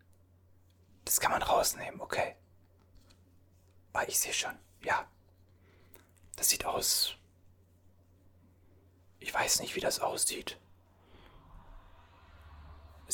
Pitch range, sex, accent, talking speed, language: 90-95 Hz, male, German, 90 wpm, German